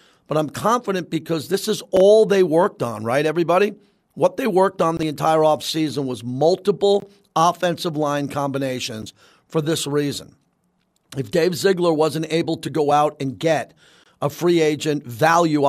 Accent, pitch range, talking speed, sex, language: American, 150-190 Hz, 155 wpm, male, English